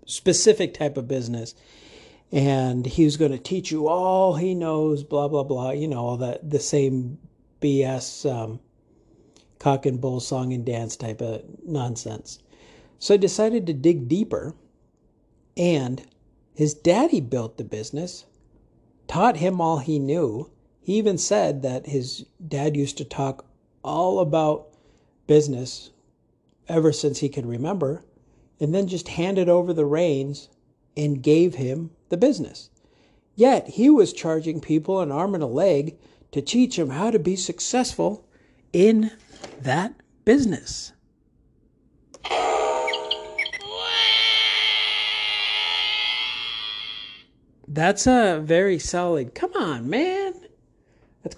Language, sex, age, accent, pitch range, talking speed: English, male, 50-69, American, 130-175 Hz, 125 wpm